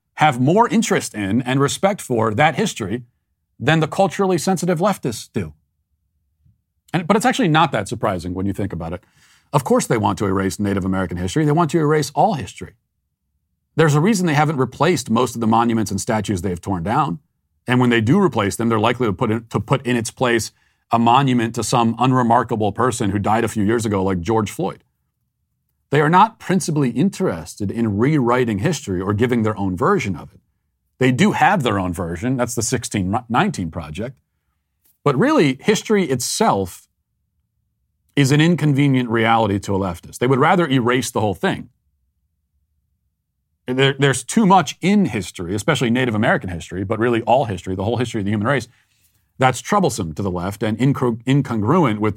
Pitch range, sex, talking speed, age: 95-140 Hz, male, 180 wpm, 40-59